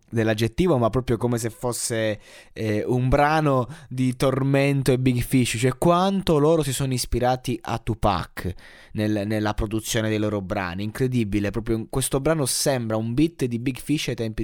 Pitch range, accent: 105-130 Hz, native